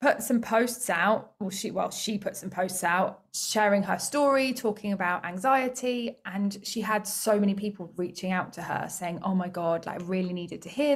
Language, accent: English, British